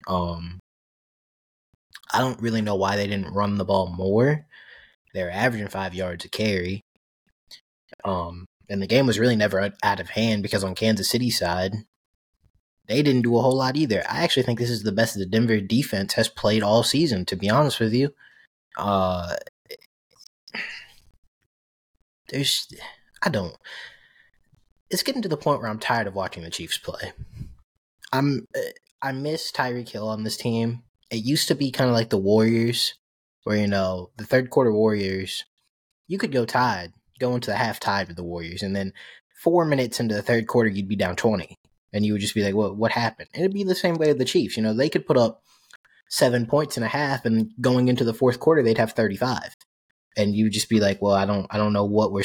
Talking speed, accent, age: 200 wpm, American, 20-39